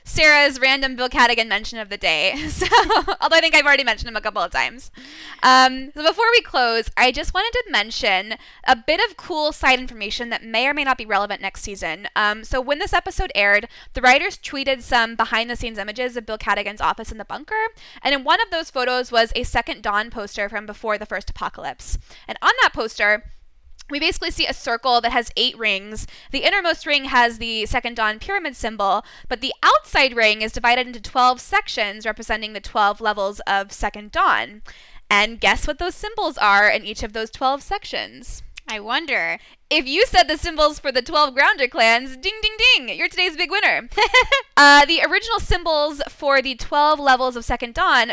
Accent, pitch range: American, 220-310 Hz